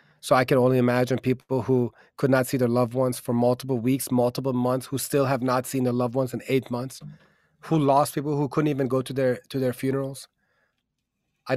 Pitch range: 125-145 Hz